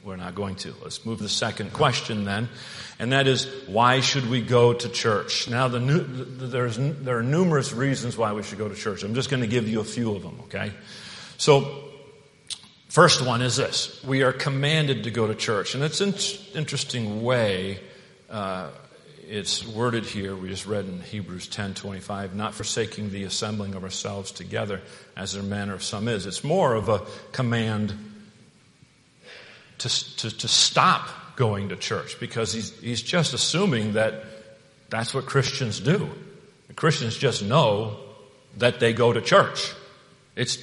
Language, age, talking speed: English, 50-69, 170 wpm